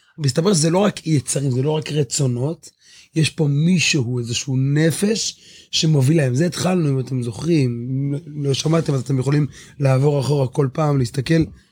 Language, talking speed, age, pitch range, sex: Hebrew, 165 wpm, 30-49, 135-170 Hz, male